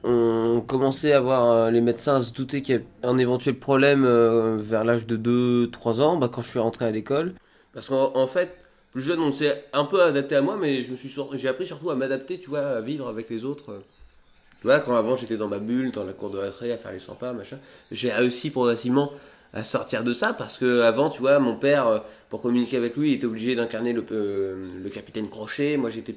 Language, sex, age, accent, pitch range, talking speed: French, male, 20-39, French, 115-140 Hz, 225 wpm